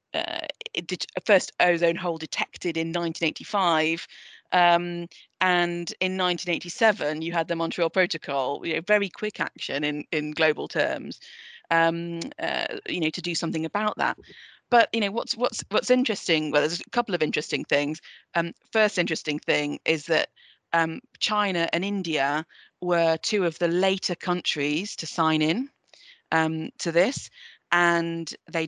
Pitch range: 155-175 Hz